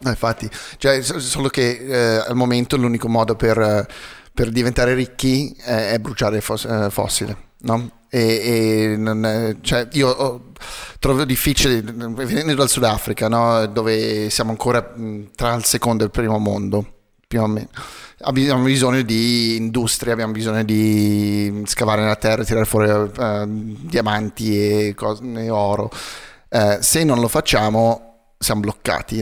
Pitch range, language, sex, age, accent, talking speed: 110-125 Hz, Italian, male, 30-49, native, 150 wpm